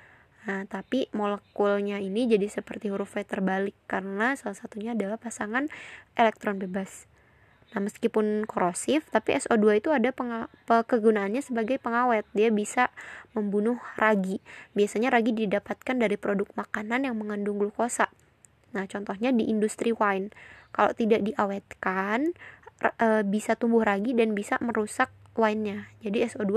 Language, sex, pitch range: Indonesian, female, 205-230 Hz